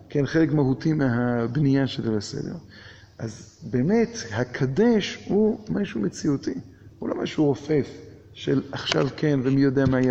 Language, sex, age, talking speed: Hebrew, male, 50-69, 130 wpm